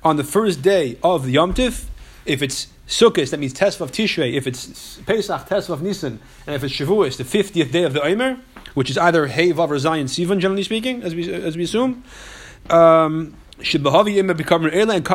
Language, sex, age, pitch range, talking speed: English, male, 30-49, 150-195 Hz, 195 wpm